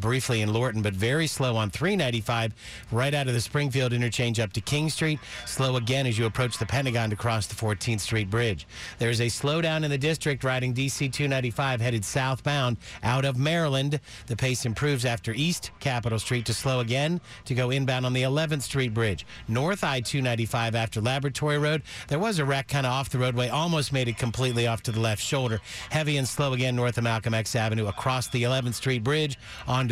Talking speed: 205 wpm